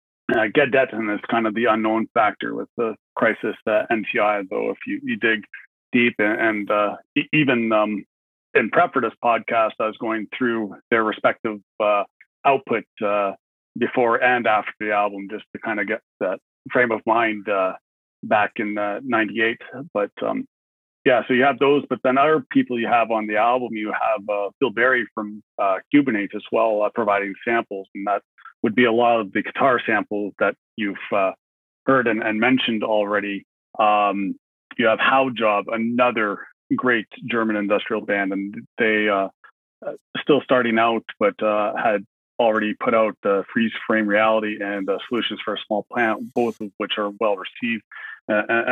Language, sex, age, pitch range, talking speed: English, male, 40-59, 105-120 Hz, 180 wpm